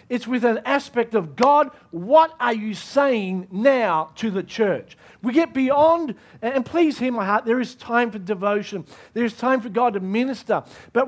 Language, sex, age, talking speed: English, male, 40-59, 190 wpm